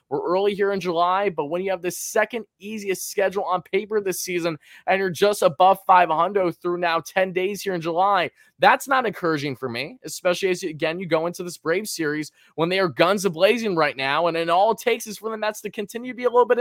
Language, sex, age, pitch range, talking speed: English, male, 20-39, 155-195 Hz, 235 wpm